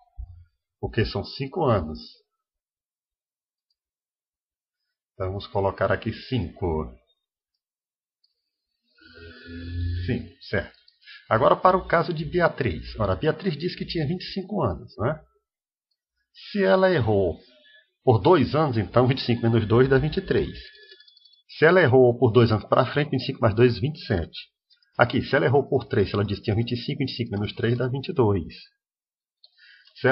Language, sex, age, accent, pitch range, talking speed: English, male, 50-69, Brazilian, 105-160 Hz, 135 wpm